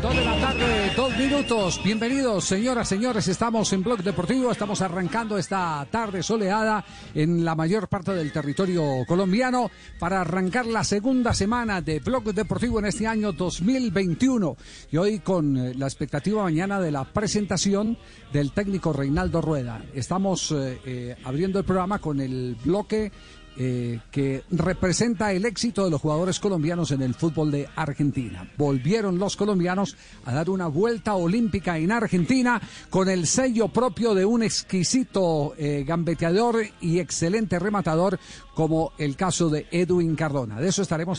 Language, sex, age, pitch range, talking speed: Spanish, male, 50-69, 155-215 Hz, 150 wpm